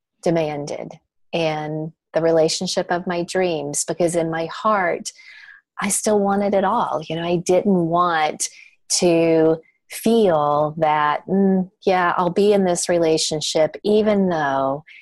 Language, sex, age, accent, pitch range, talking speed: English, female, 30-49, American, 160-200 Hz, 130 wpm